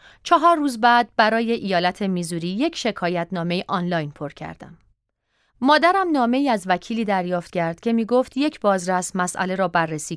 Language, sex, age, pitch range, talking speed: Persian, female, 30-49, 170-255 Hz, 160 wpm